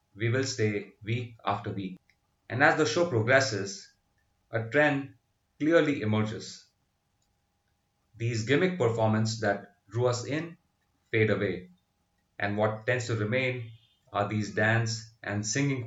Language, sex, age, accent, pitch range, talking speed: English, male, 30-49, Indian, 100-115 Hz, 130 wpm